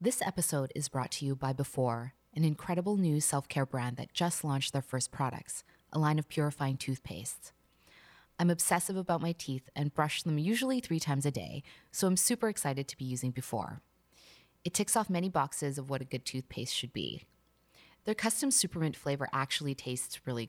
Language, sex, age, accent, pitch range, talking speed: English, female, 20-39, American, 135-170 Hz, 190 wpm